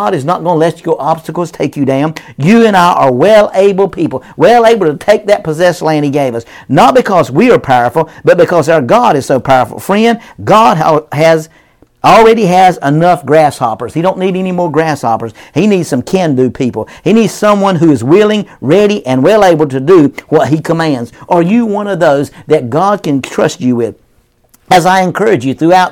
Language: English